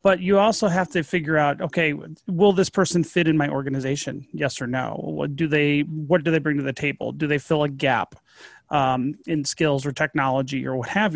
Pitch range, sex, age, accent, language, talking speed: 150-185 Hz, male, 30-49, American, English, 220 wpm